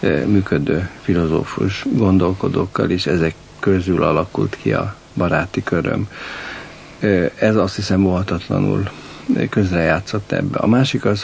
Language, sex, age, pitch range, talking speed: Hungarian, male, 60-79, 90-105 Hz, 105 wpm